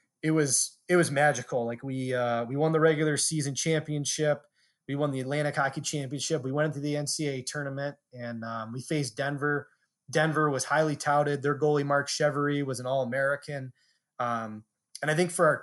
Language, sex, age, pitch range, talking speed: English, male, 20-39, 130-155 Hz, 190 wpm